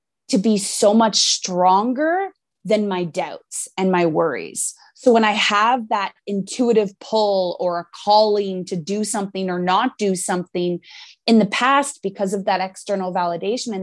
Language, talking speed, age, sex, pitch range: English, 160 wpm, 20-39, female, 185-225 Hz